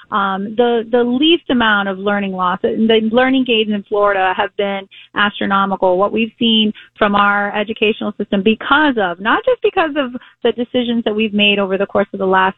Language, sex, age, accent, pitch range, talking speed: English, female, 30-49, American, 195-230 Hz, 190 wpm